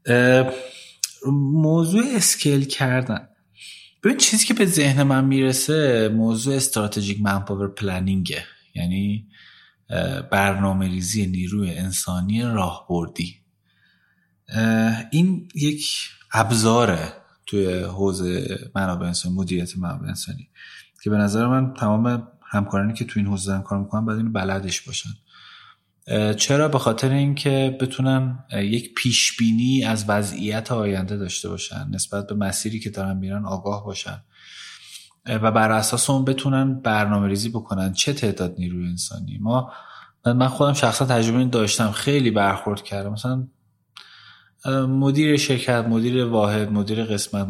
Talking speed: 120 wpm